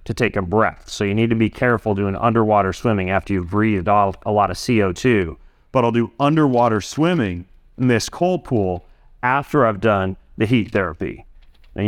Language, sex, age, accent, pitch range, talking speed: English, male, 30-49, American, 100-130 Hz, 185 wpm